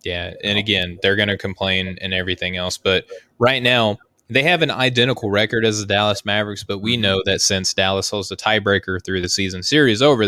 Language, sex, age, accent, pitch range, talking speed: English, male, 20-39, American, 95-110 Hz, 210 wpm